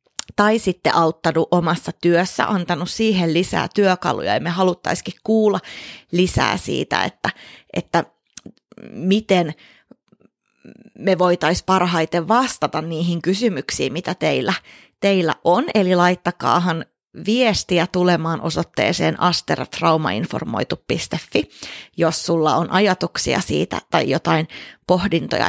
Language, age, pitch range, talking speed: Finnish, 30-49, 175-220 Hz, 100 wpm